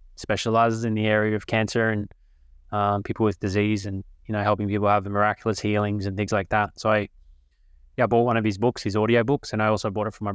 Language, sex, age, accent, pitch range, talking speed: English, male, 20-39, Australian, 100-115 Hz, 245 wpm